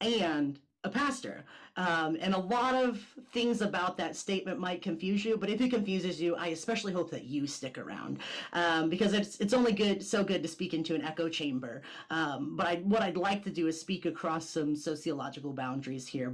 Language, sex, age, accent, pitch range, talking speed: English, female, 30-49, American, 160-200 Hz, 205 wpm